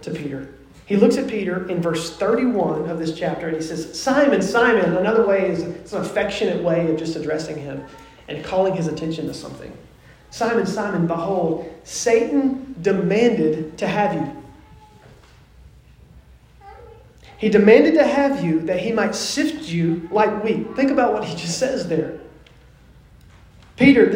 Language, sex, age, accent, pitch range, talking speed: English, male, 30-49, American, 170-230 Hz, 155 wpm